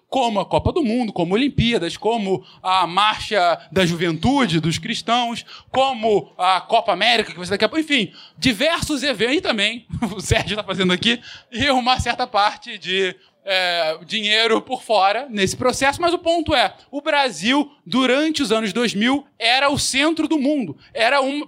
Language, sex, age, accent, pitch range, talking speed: Portuguese, male, 20-39, Brazilian, 230-295 Hz, 170 wpm